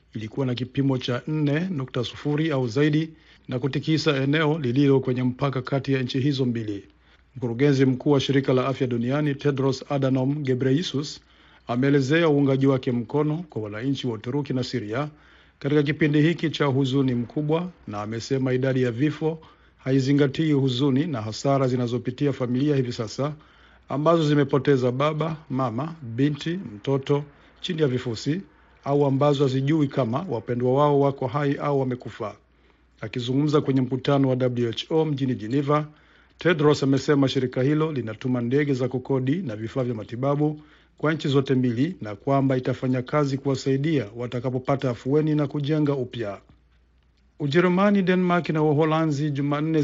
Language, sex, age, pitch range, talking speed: Swahili, male, 50-69, 130-150 Hz, 140 wpm